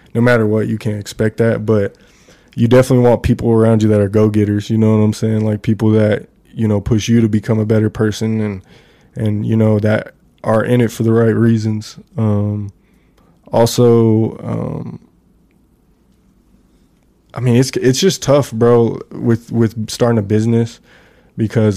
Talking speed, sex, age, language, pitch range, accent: 175 wpm, male, 20-39, English, 105-115 Hz, American